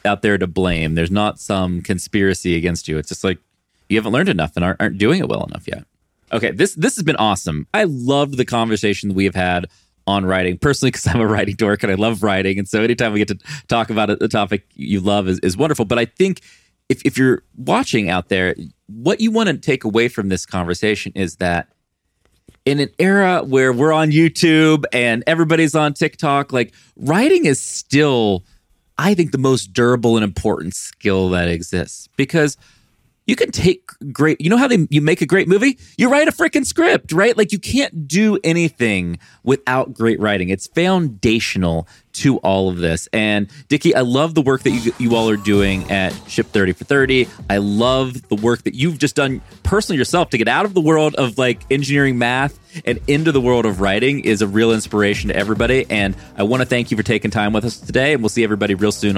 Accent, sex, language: American, male, English